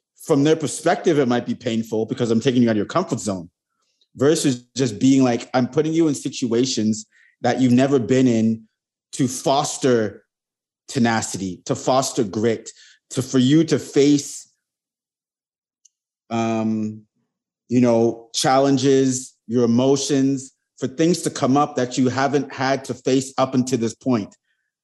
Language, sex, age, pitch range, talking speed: English, male, 30-49, 120-140 Hz, 150 wpm